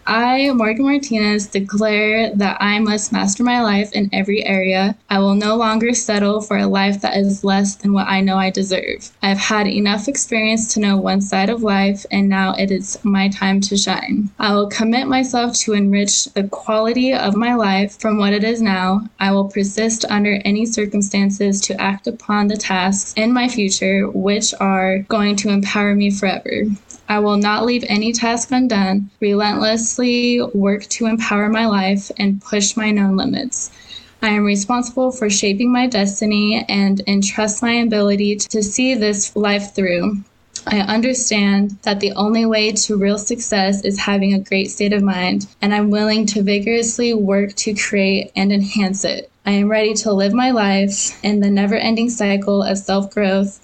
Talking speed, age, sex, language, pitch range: 180 wpm, 10-29, female, English, 195-220 Hz